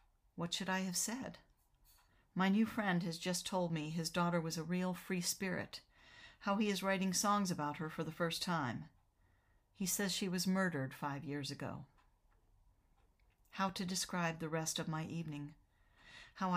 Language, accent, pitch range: English, American, 150-190 Hz